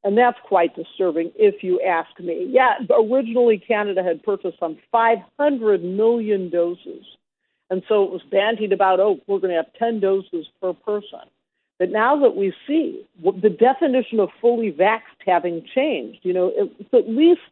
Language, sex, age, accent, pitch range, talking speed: English, female, 50-69, American, 190-255 Hz, 170 wpm